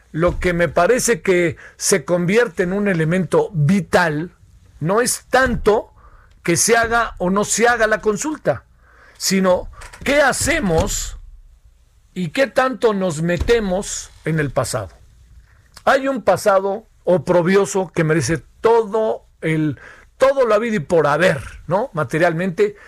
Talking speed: 130 wpm